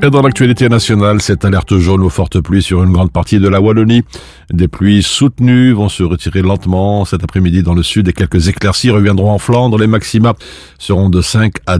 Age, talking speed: 50-69, 210 wpm